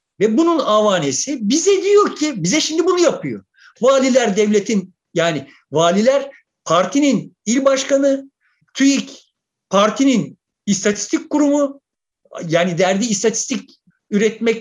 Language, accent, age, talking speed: Turkish, native, 50-69, 105 wpm